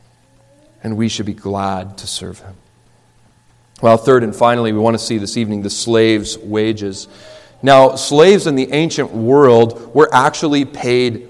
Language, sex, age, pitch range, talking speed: English, male, 40-59, 110-145 Hz, 160 wpm